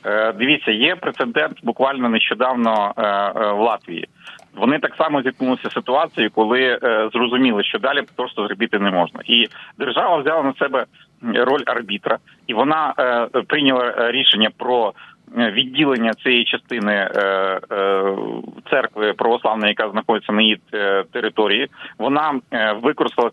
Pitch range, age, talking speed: 105-125 Hz, 30-49, 115 wpm